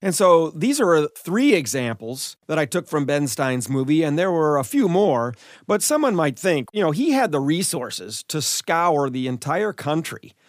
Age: 40-59